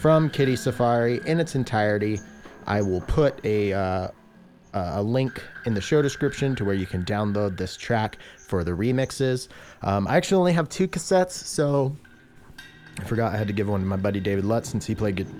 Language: English